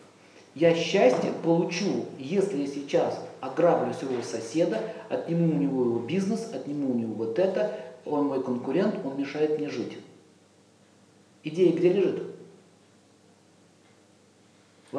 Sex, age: male, 50-69